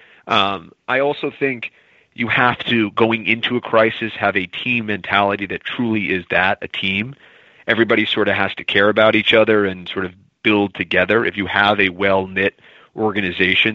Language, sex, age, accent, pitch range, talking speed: English, male, 30-49, American, 100-115 Hz, 180 wpm